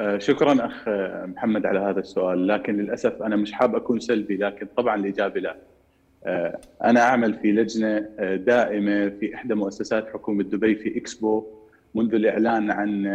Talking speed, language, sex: 145 wpm, Arabic, male